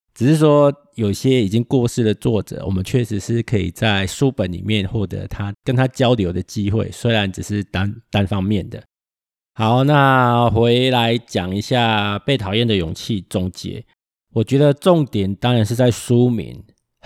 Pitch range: 95-120 Hz